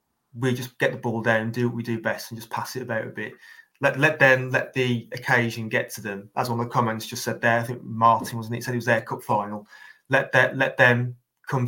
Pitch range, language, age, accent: 115-125 Hz, English, 20-39, British